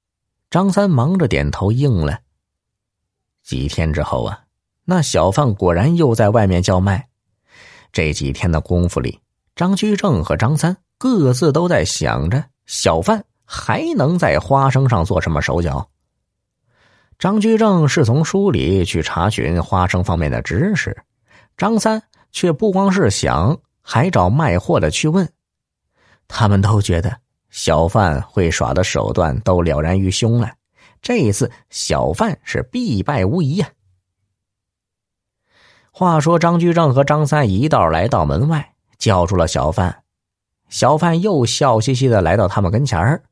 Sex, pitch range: male, 95-160 Hz